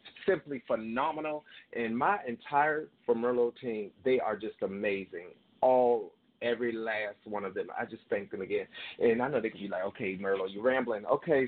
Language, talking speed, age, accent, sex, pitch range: English, 185 wpm, 30-49, American, male, 110-130 Hz